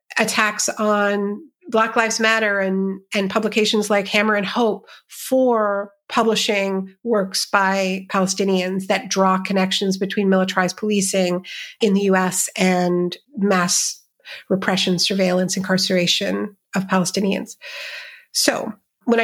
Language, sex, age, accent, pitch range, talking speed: English, female, 50-69, American, 185-215 Hz, 110 wpm